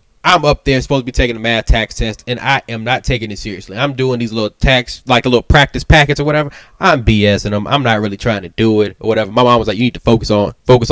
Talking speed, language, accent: 285 wpm, English, American